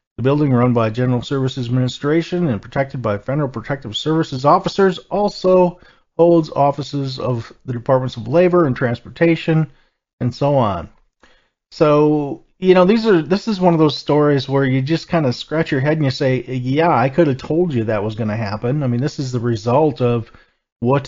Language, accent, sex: English, American, male